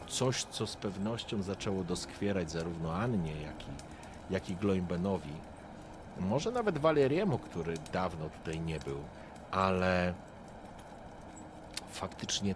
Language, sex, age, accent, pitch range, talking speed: Polish, male, 40-59, native, 90-115 Hz, 110 wpm